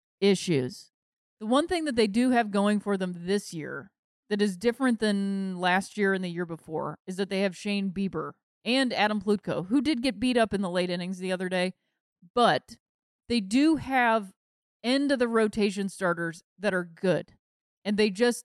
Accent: American